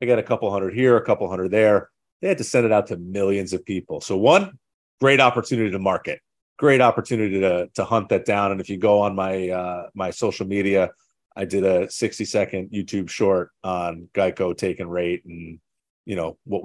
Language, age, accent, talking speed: English, 30-49, American, 210 wpm